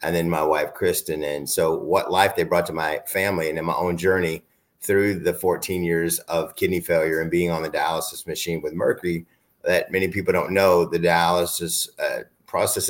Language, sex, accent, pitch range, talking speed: English, male, American, 85-105 Hz, 200 wpm